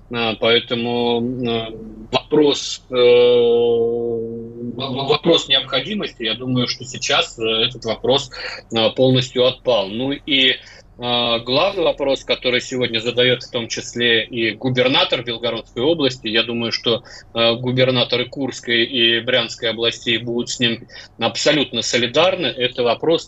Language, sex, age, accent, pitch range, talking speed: Russian, male, 20-39, native, 115-130 Hz, 110 wpm